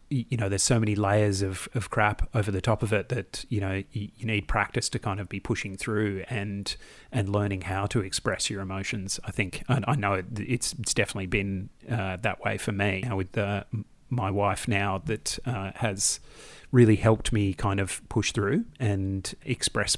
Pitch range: 100-120 Hz